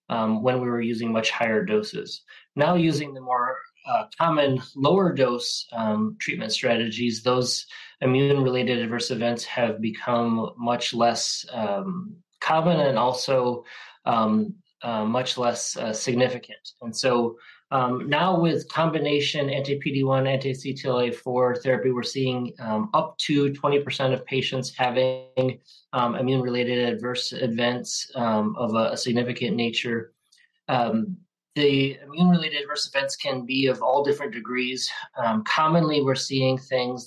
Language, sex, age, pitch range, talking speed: English, male, 20-39, 120-145 Hz, 130 wpm